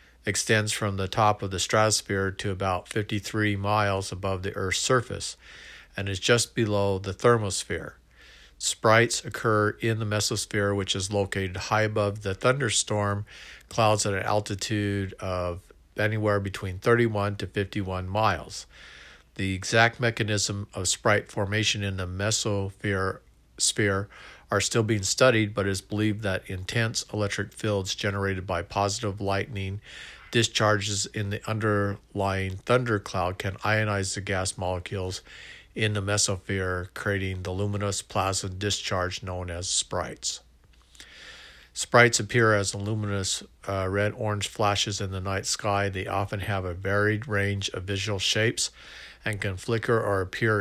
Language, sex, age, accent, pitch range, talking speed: English, male, 50-69, American, 95-110 Hz, 140 wpm